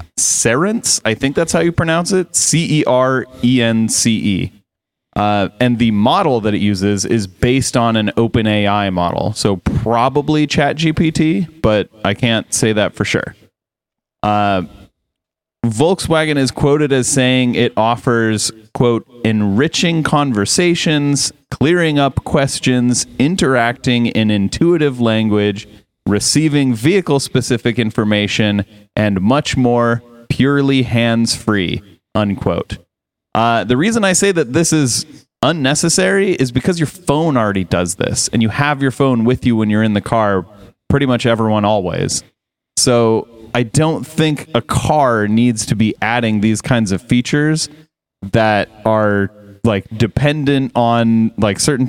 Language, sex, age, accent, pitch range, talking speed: English, male, 30-49, American, 110-145 Hz, 130 wpm